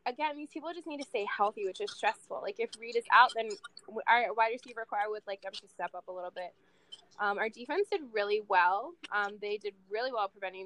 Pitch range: 200-255 Hz